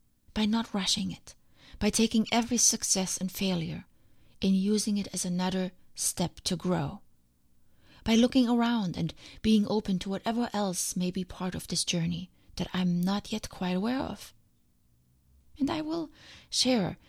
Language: English